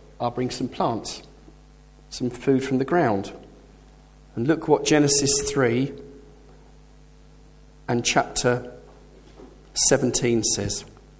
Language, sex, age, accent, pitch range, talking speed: English, male, 40-59, British, 120-145 Hz, 95 wpm